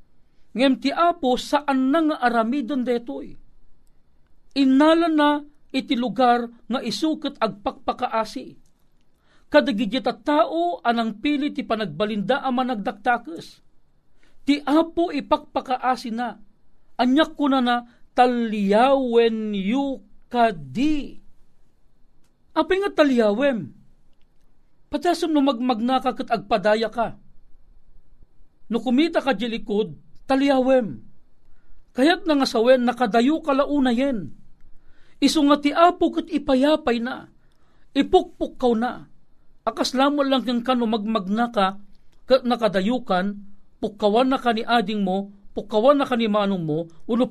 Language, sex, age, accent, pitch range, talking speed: Filipino, male, 50-69, native, 220-280 Hz, 105 wpm